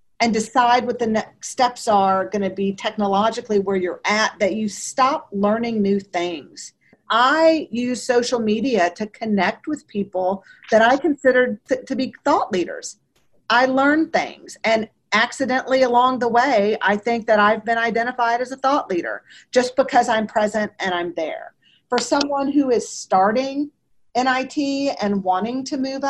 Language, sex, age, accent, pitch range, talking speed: English, female, 40-59, American, 215-275 Hz, 160 wpm